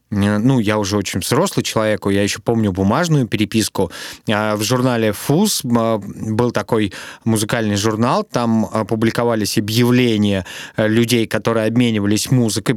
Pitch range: 115-145 Hz